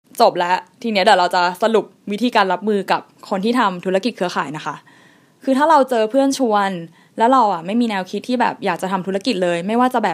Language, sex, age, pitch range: Thai, female, 10-29, 185-250 Hz